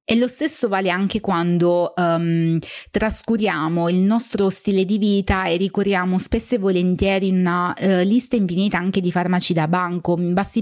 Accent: native